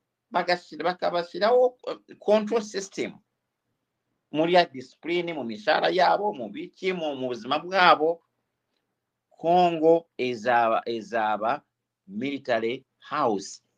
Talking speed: 80 wpm